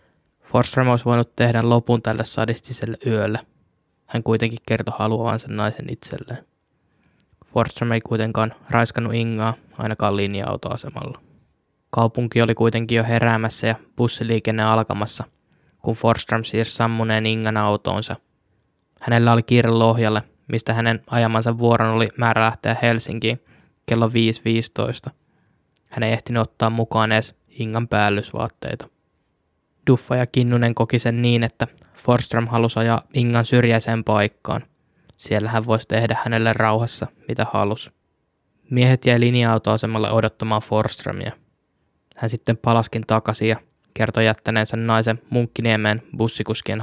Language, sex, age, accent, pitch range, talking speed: Finnish, male, 10-29, native, 110-115 Hz, 120 wpm